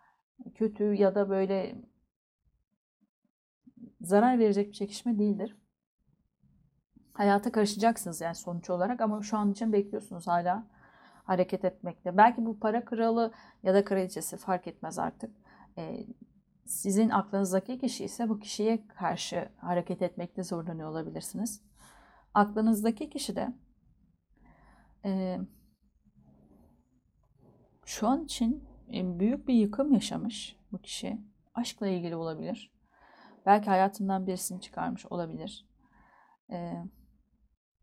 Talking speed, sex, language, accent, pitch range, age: 105 wpm, female, Turkish, native, 185-230 Hz, 40-59